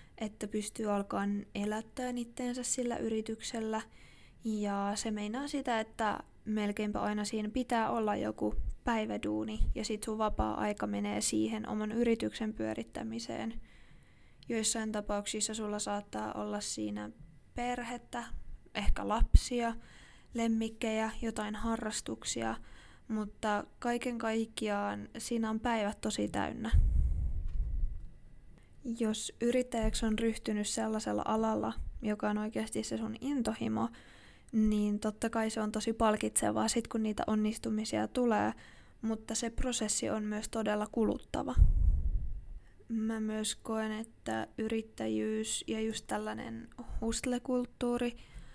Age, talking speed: 20-39, 110 wpm